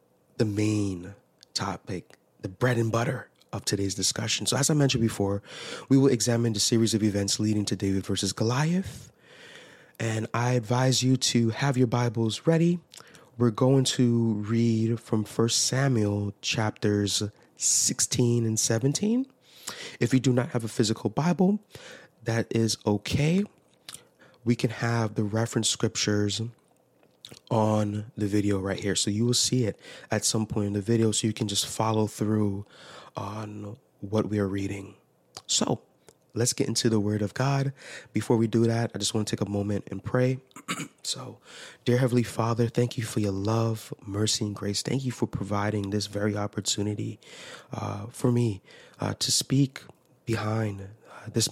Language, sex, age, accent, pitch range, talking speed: English, male, 20-39, American, 105-125 Hz, 165 wpm